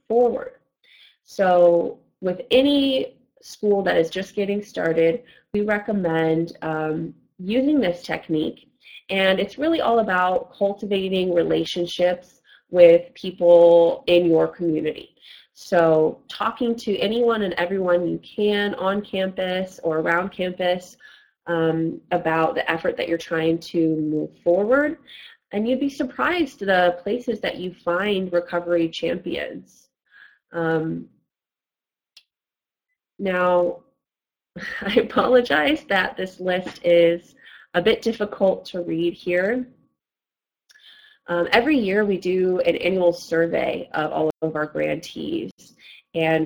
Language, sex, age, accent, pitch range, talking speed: English, female, 20-39, American, 165-210 Hz, 115 wpm